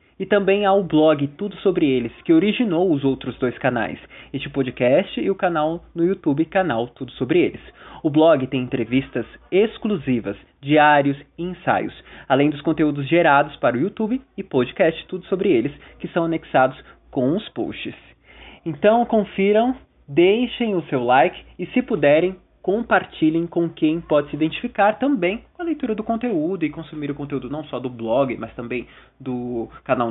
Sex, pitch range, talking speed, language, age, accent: male, 135-180 Hz, 165 wpm, Portuguese, 20-39, Brazilian